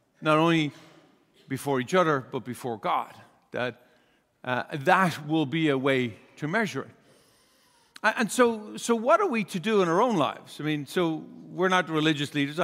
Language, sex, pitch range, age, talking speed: English, male, 150-195 Hz, 50-69, 175 wpm